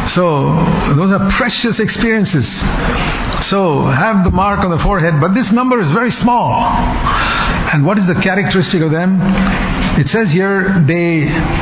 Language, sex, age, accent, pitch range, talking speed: English, male, 60-79, Indian, 140-190 Hz, 150 wpm